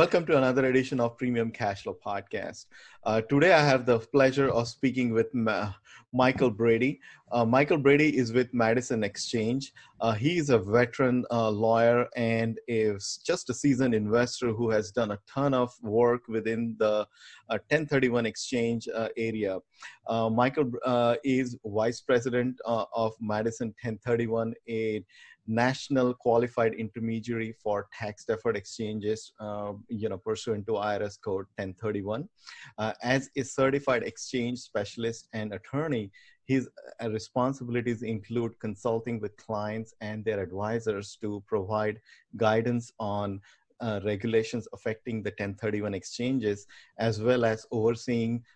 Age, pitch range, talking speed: 30-49, 110-120 Hz, 140 wpm